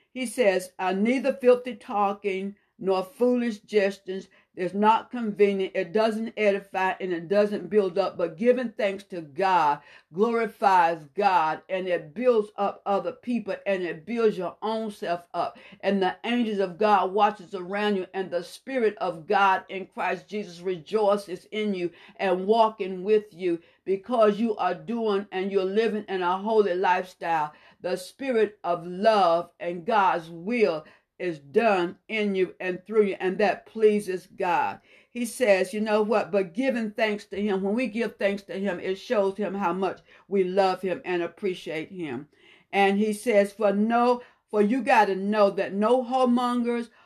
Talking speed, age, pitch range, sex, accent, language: 170 wpm, 60-79, 190-220 Hz, female, American, English